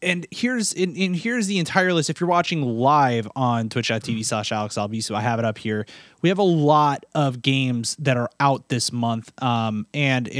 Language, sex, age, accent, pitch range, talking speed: English, male, 30-49, American, 115-150 Hz, 195 wpm